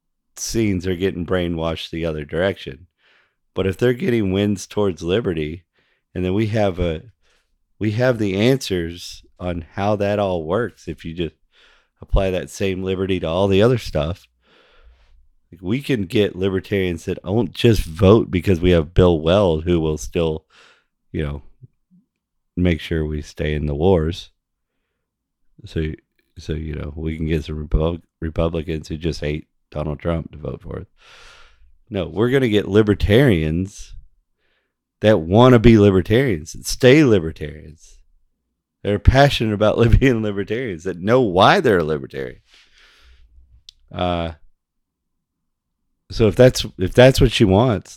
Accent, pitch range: American, 80-105 Hz